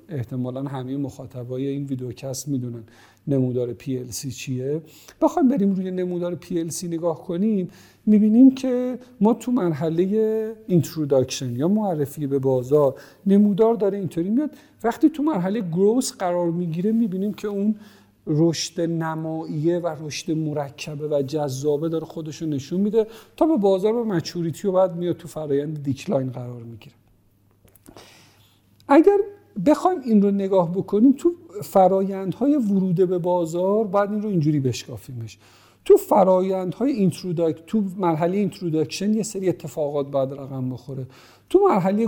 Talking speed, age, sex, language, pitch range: 135 wpm, 50-69, male, Persian, 140-205 Hz